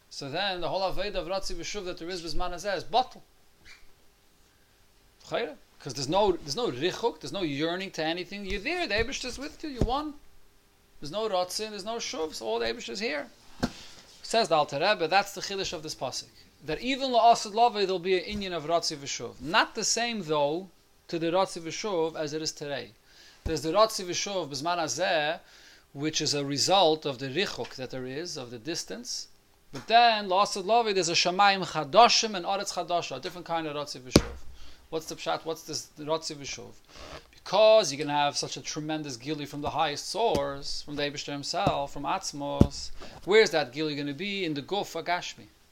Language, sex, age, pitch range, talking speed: English, male, 30-49, 145-195 Hz, 195 wpm